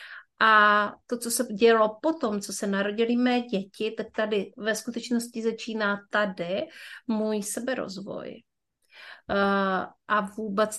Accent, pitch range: native, 200-230 Hz